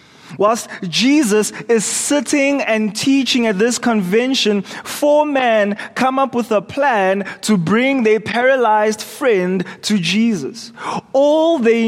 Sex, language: male, English